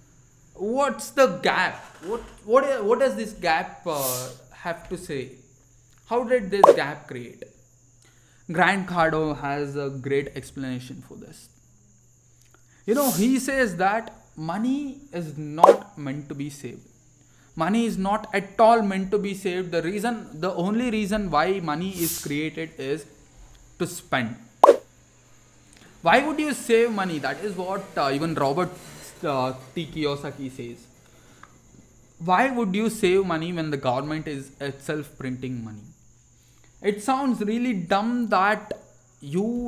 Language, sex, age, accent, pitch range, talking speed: English, male, 20-39, Indian, 135-210 Hz, 140 wpm